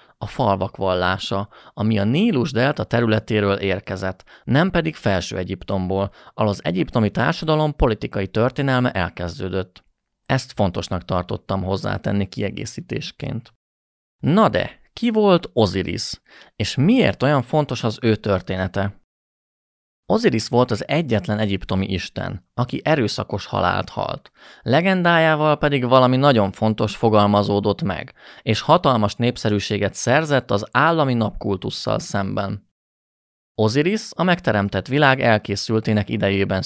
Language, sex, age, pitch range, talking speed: Hungarian, male, 30-49, 95-125 Hz, 110 wpm